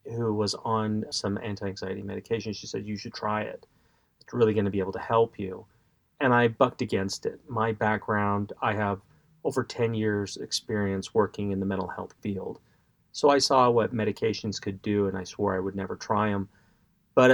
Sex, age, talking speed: male, 30-49, 190 wpm